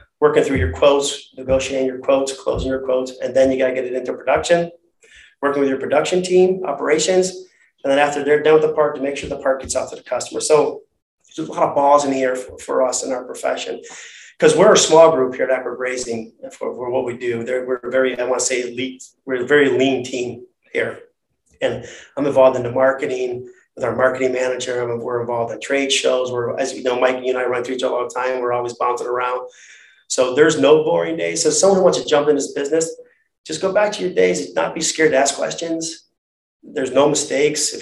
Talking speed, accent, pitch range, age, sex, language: 235 wpm, American, 130-165 Hz, 30-49, male, English